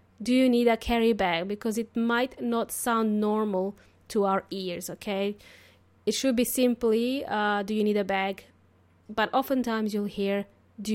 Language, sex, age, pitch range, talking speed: English, female, 20-39, 220-295 Hz, 170 wpm